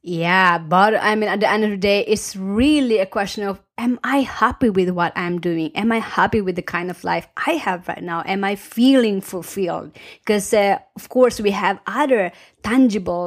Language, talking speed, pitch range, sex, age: English, 210 wpm, 180-220 Hz, female, 30-49